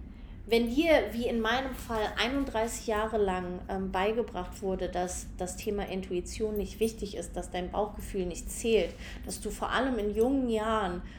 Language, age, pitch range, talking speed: German, 30-49, 185-225 Hz, 165 wpm